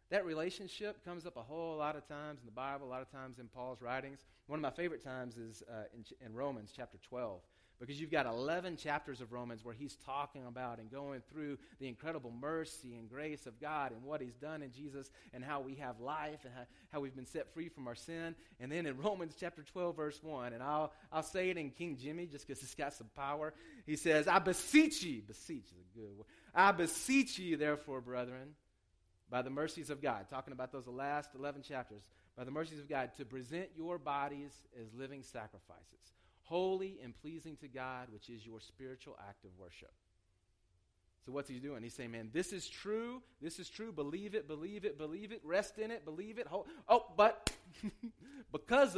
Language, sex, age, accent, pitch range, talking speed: English, male, 30-49, American, 125-165 Hz, 210 wpm